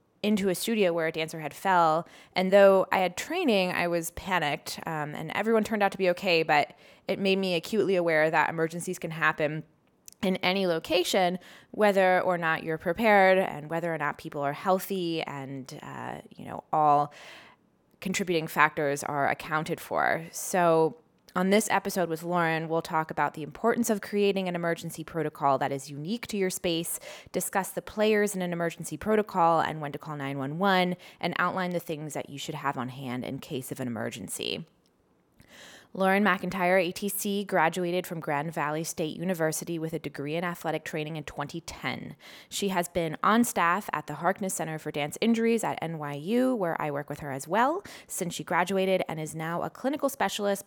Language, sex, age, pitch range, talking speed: English, female, 20-39, 155-190 Hz, 185 wpm